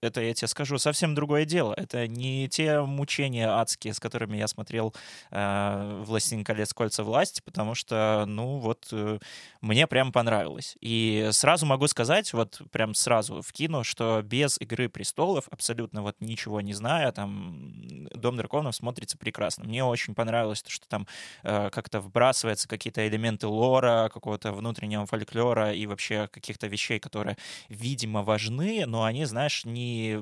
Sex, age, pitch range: male, 20-39, 105-130 Hz